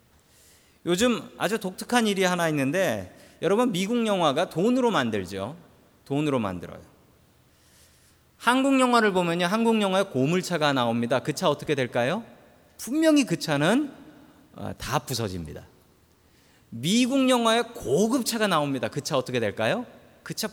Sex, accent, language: male, native, Korean